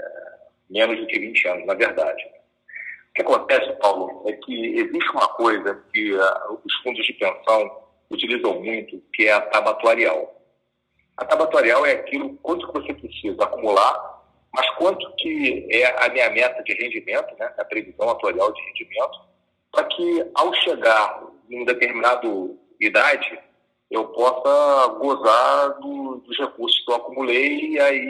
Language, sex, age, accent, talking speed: Portuguese, male, 40-59, Brazilian, 150 wpm